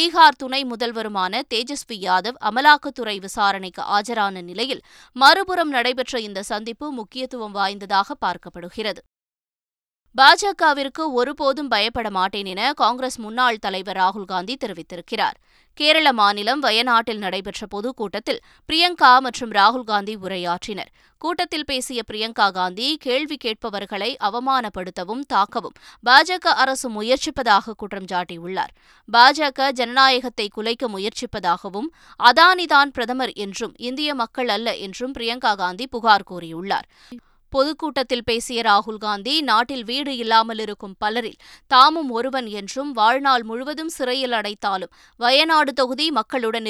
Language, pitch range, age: Tamil, 205-265 Hz, 20-39